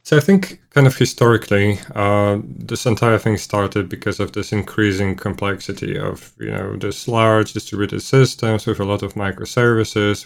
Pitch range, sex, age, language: 100-115 Hz, male, 20-39, English